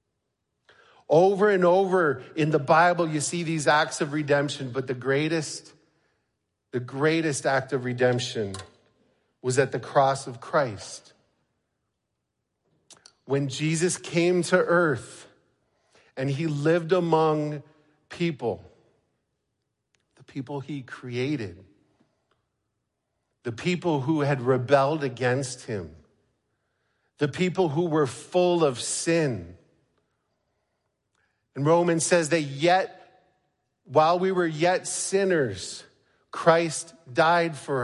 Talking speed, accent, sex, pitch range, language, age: 105 wpm, American, male, 135-170 Hz, English, 50-69